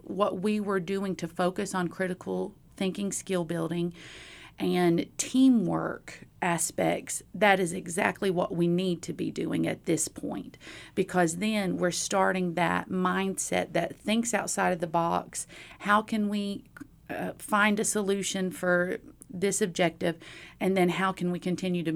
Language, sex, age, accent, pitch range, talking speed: English, female, 40-59, American, 175-200 Hz, 150 wpm